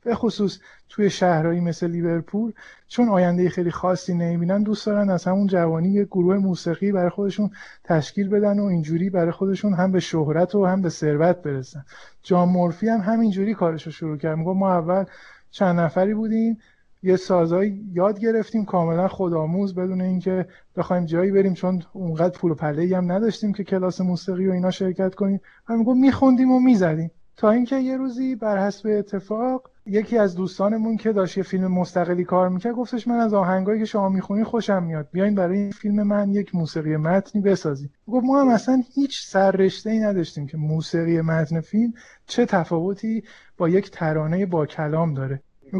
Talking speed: 175 wpm